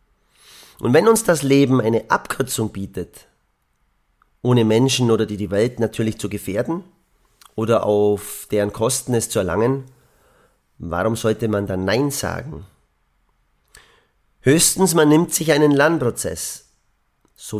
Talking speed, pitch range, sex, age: 125 wpm, 105-135 Hz, male, 40-59